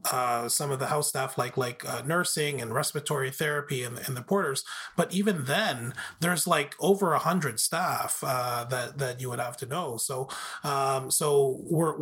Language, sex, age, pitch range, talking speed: English, male, 30-49, 135-170 Hz, 190 wpm